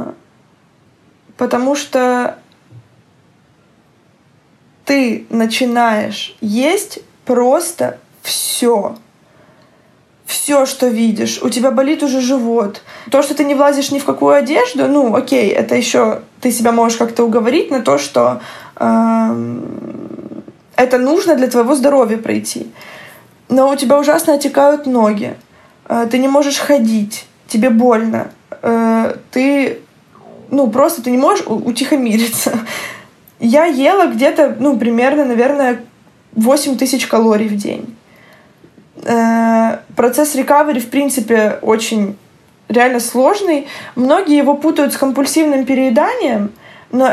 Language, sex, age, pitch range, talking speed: Russian, female, 20-39, 230-285 Hz, 110 wpm